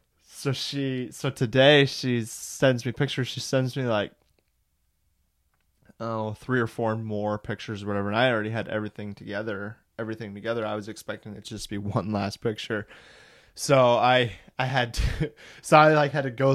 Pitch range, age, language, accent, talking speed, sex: 100-115 Hz, 20-39, English, American, 180 wpm, male